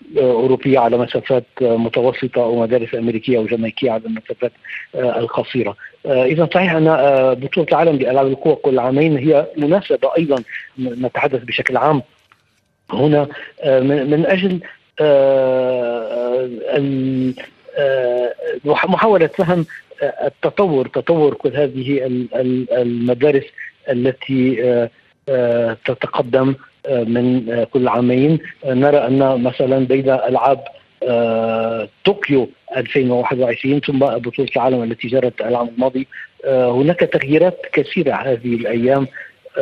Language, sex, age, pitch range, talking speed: Arabic, male, 50-69, 120-145 Hz, 90 wpm